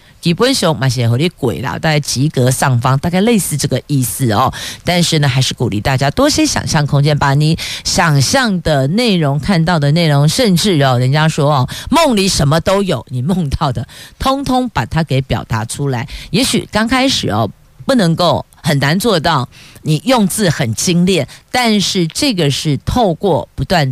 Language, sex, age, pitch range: Chinese, female, 50-69, 135-195 Hz